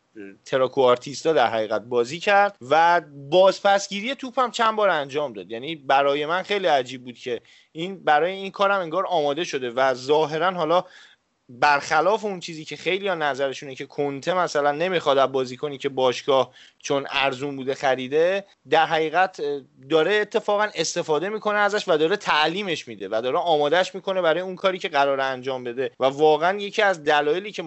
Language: Persian